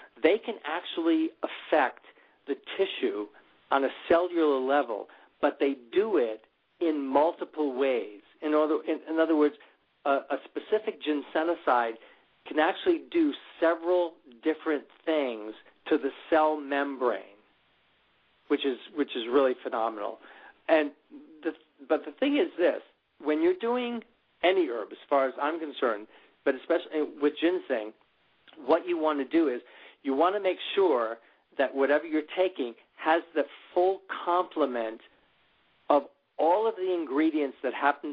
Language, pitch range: English, 140-180 Hz